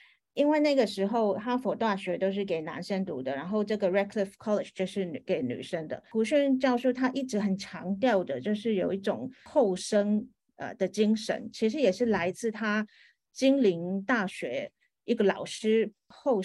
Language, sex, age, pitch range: Chinese, female, 40-59, 190-245 Hz